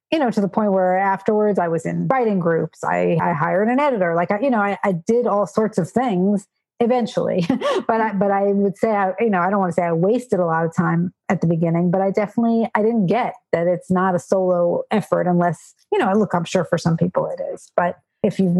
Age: 40-59